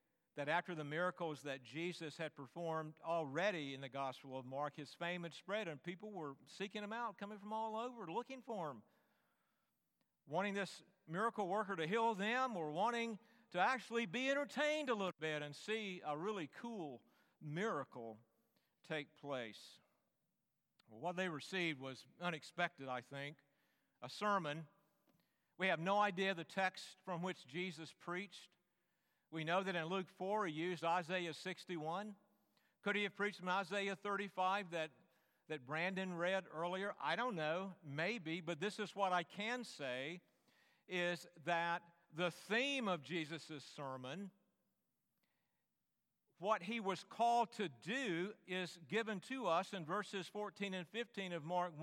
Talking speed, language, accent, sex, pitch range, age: 150 wpm, English, American, male, 165-210 Hz, 50-69